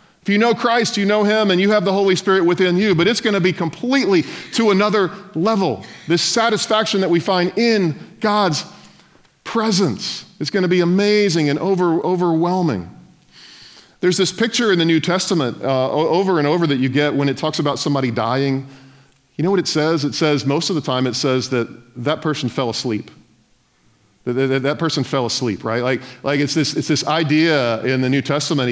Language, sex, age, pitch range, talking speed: English, male, 40-59, 140-185 Hz, 195 wpm